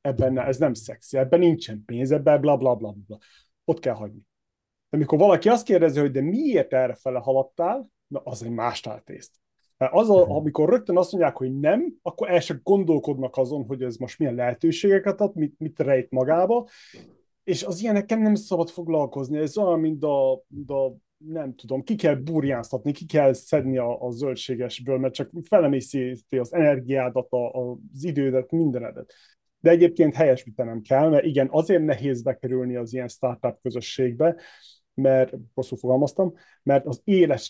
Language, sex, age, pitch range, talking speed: Hungarian, male, 30-49, 130-165 Hz, 165 wpm